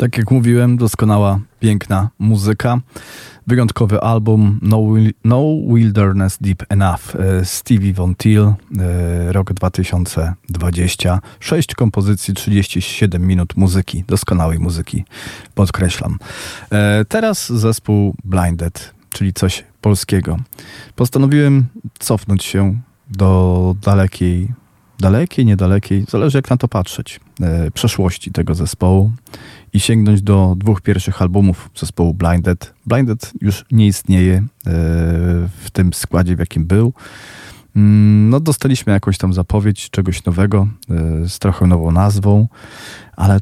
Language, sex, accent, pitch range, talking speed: Polish, male, native, 95-115 Hz, 105 wpm